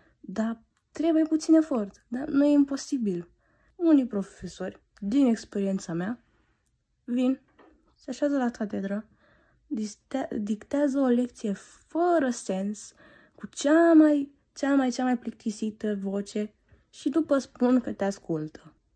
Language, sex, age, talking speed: Romanian, female, 20-39, 120 wpm